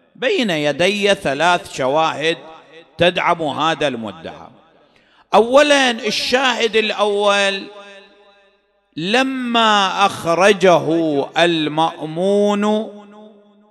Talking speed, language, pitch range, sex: 55 wpm, English, 155-205 Hz, male